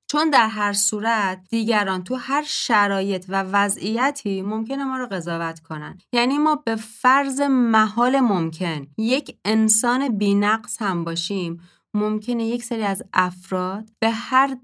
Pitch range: 175-225 Hz